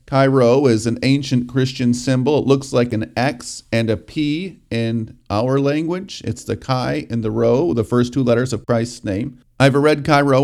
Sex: male